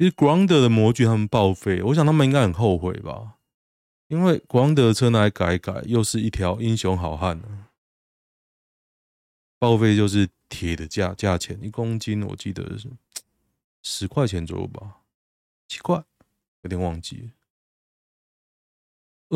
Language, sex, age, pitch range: Chinese, male, 20-39, 90-125 Hz